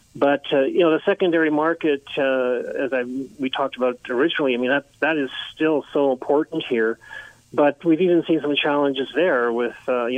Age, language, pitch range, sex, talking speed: 40-59, English, 120-145 Hz, male, 195 wpm